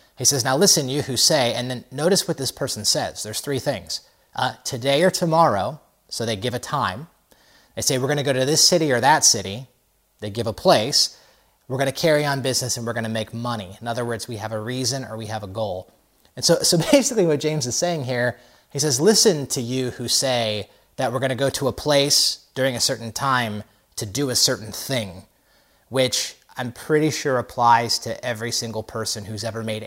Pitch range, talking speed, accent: 115-140 Hz, 225 wpm, American